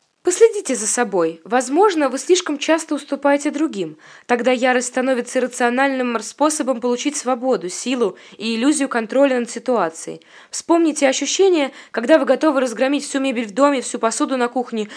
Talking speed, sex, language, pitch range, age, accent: 145 wpm, female, Russian, 225-285 Hz, 20-39, native